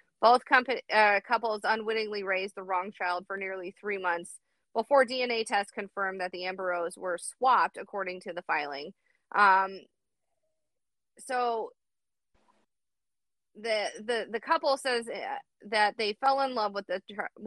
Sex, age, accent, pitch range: female, 30-49, American, 180-230 Hz